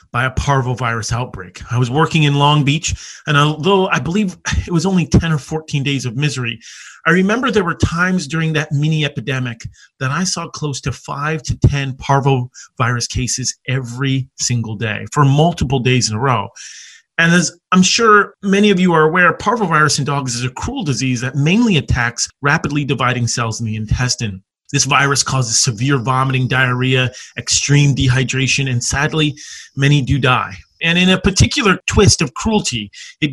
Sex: male